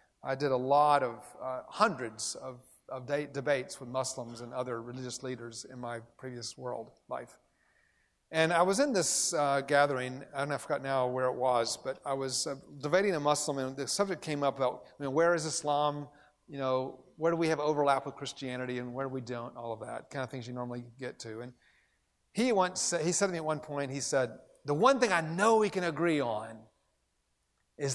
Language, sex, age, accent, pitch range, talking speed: English, male, 40-59, American, 130-170 Hz, 215 wpm